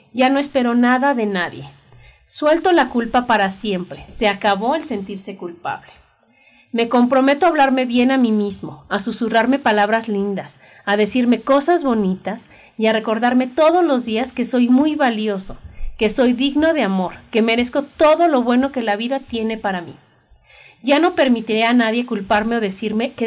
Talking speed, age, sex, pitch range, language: 175 wpm, 40-59, female, 210-260 Hz, Spanish